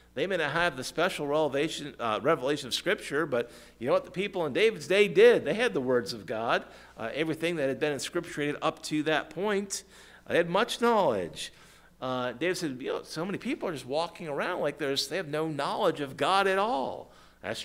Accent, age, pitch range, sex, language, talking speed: American, 50-69, 140-190 Hz, male, English, 220 wpm